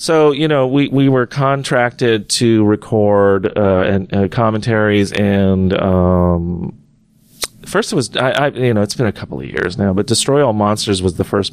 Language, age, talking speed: English, 40-59, 185 wpm